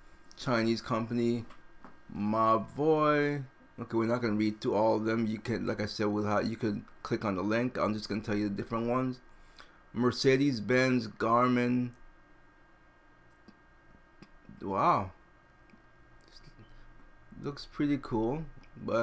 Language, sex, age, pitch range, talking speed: English, male, 30-49, 110-125 Hz, 135 wpm